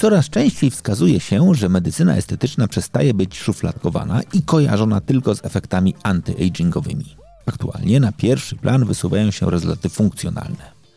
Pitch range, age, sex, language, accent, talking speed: 90-135 Hz, 40-59, male, Polish, native, 135 wpm